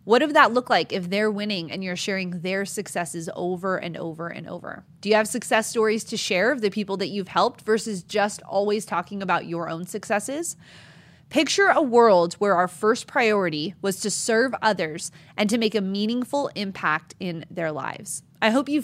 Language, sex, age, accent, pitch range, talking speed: English, female, 20-39, American, 185-240 Hz, 195 wpm